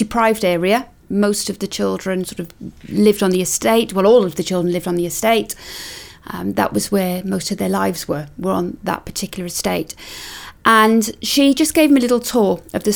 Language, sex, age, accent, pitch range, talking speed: English, female, 40-59, British, 180-225 Hz, 210 wpm